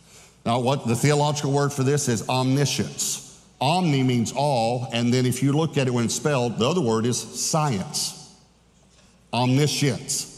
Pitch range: 125-165 Hz